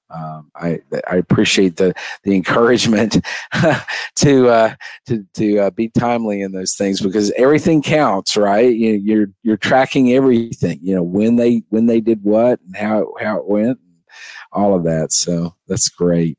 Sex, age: male, 50-69